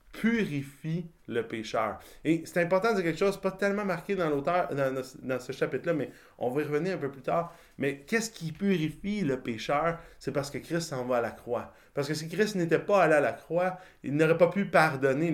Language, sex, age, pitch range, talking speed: French, male, 30-49, 125-175 Hz, 225 wpm